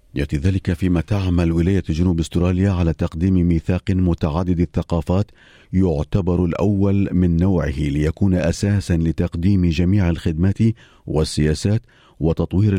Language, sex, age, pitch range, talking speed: Arabic, male, 40-59, 80-95 Hz, 110 wpm